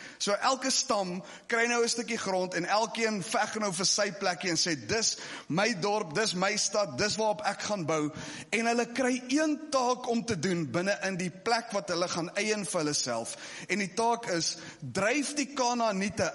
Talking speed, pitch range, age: 200 wpm, 175-240 Hz, 30-49